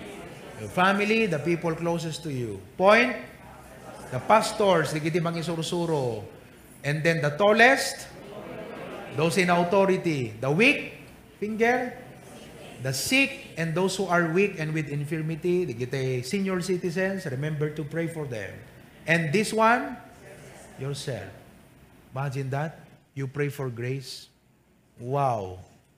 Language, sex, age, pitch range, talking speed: English, male, 30-49, 140-195 Hz, 115 wpm